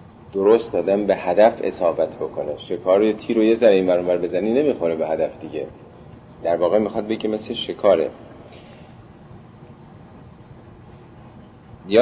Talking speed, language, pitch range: 125 wpm, Persian, 95-120 Hz